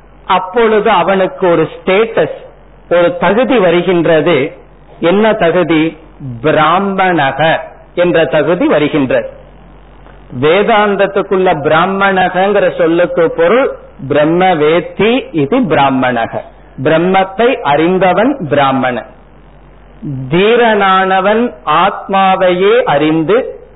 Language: Tamil